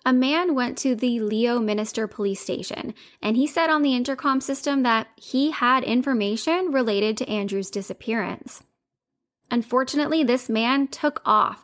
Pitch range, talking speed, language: 215-255 Hz, 150 wpm, English